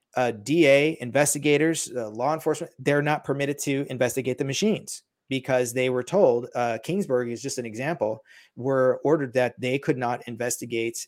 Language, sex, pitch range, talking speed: English, male, 120-140 Hz, 165 wpm